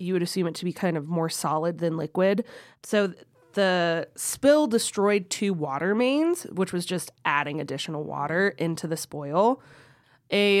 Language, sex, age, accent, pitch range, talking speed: English, female, 20-39, American, 160-200 Hz, 165 wpm